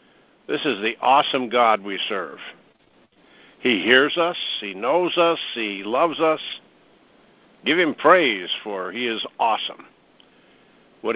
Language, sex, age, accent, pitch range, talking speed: English, male, 60-79, American, 120-150 Hz, 130 wpm